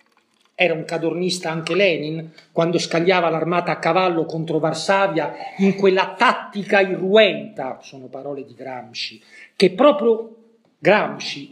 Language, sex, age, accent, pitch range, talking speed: Italian, male, 40-59, native, 155-195 Hz, 120 wpm